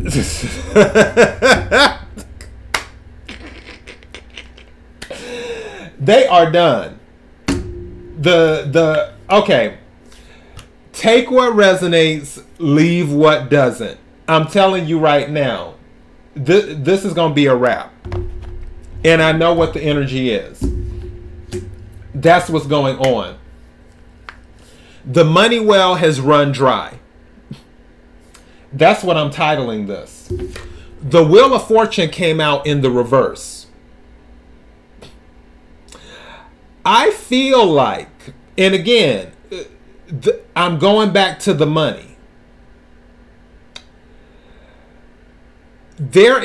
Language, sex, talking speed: English, male, 90 wpm